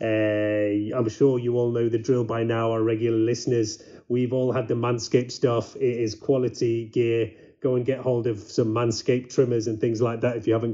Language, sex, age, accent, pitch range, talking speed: English, male, 30-49, British, 105-120 Hz, 210 wpm